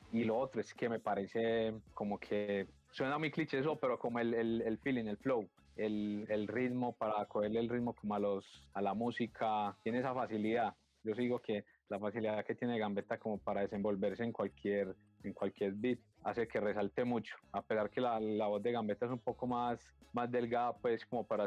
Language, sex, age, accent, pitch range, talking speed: Spanish, male, 20-39, Colombian, 105-120 Hz, 210 wpm